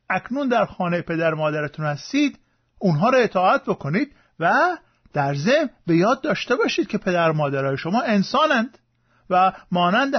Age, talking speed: 50-69, 140 wpm